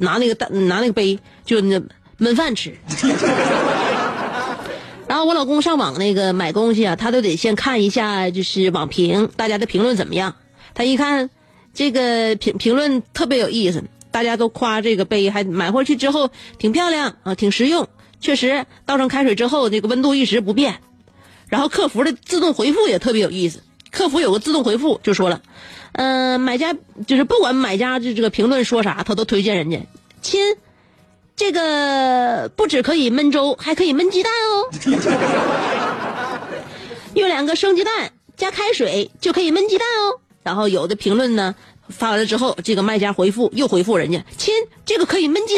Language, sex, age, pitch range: Chinese, female, 30-49, 210-300 Hz